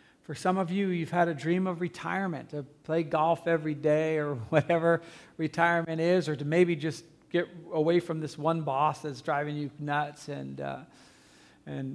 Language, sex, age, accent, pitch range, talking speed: English, male, 40-59, American, 140-170 Hz, 180 wpm